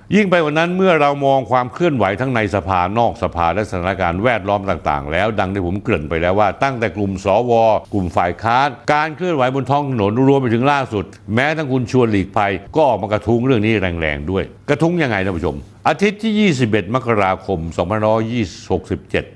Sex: male